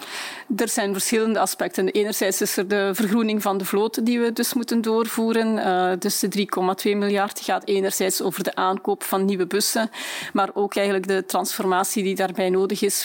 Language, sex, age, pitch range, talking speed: Dutch, female, 30-49, 185-220 Hz, 175 wpm